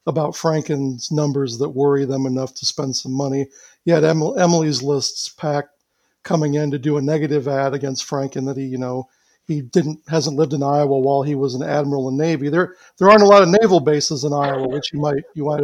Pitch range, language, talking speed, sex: 140-170 Hz, English, 220 wpm, male